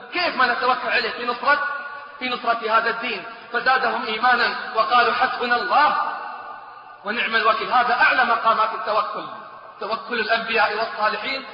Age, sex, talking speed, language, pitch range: 30-49, male, 130 wpm, English, 220-270 Hz